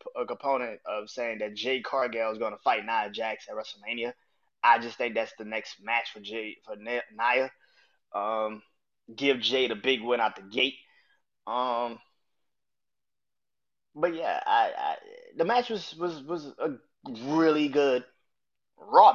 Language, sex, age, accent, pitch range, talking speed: English, male, 20-39, American, 115-155 Hz, 155 wpm